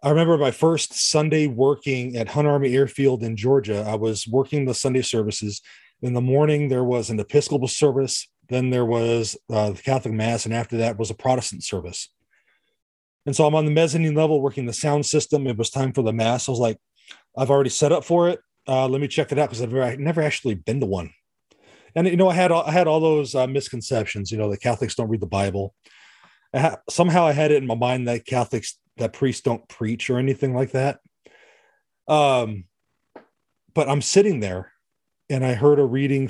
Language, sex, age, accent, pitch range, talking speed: English, male, 30-49, American, 115-140 Hz, 210 wpm